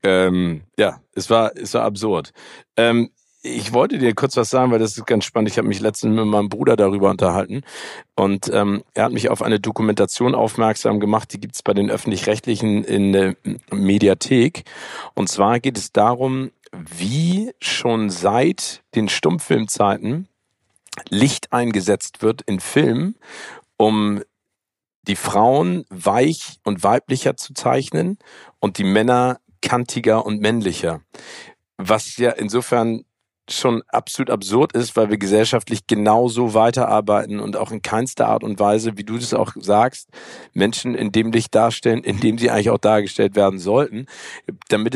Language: German